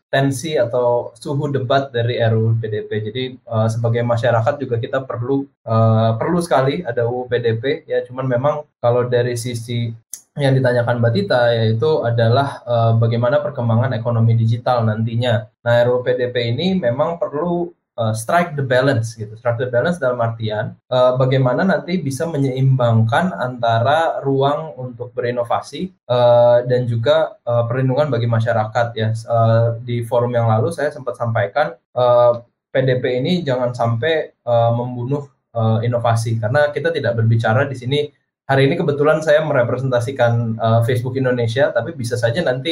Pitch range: 115-140 Hz